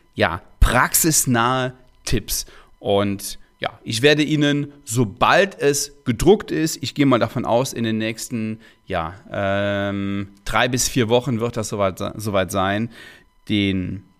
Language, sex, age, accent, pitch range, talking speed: German, male, 30-49, German, 105-145 Hz, 130 wpm